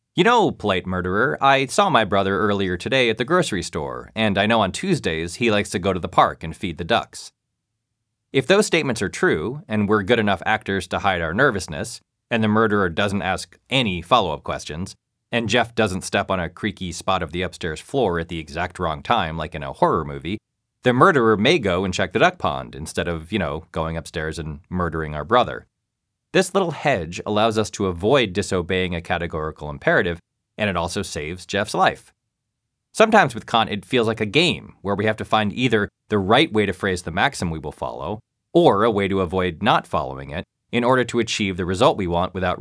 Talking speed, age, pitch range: 215 wpm, 20-39, 90-115 Hz